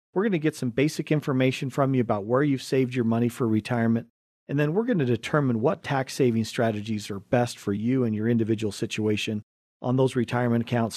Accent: American